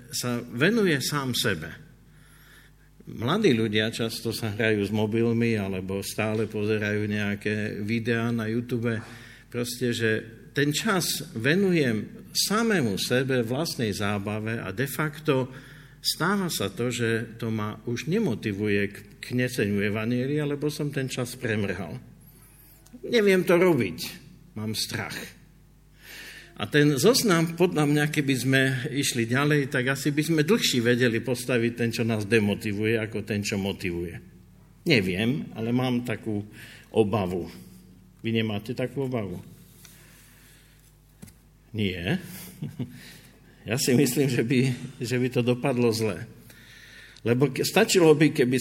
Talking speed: 125 wpm